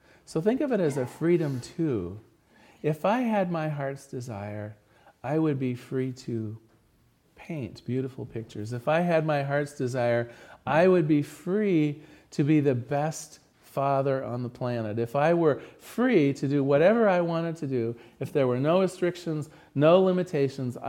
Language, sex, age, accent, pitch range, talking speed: English, male, 40-59, American, 125-160 Hz, 165 wpm